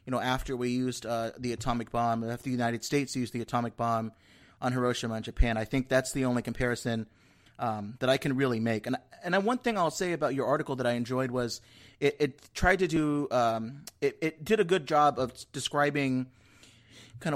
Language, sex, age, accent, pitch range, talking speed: English, male, 30-49, American, 120-155 Hz, 205 wpm